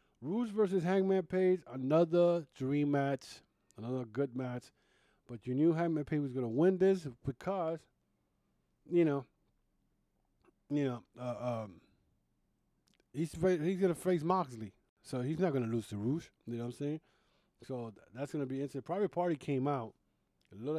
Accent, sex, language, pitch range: American, male, English, 120-150 Hz